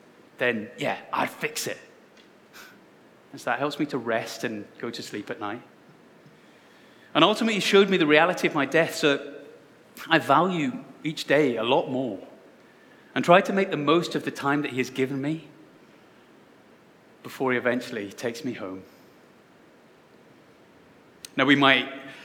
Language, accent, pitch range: English, British, 140-175 Hz